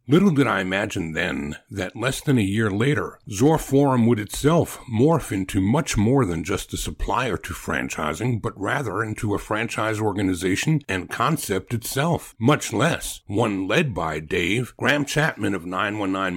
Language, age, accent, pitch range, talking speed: English, 60-79, American, 95-130 Hz, 160 wpm